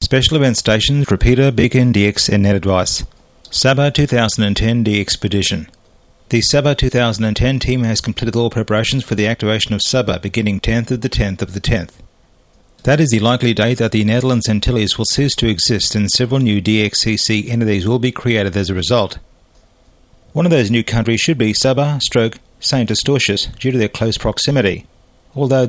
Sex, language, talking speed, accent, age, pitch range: male, English, 175 wpm, Australian, 40-59, 105-125 Hz